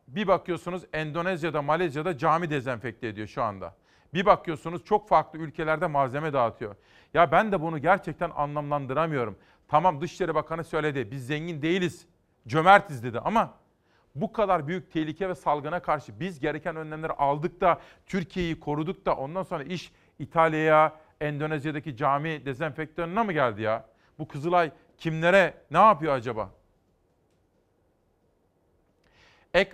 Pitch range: 140-175 Hz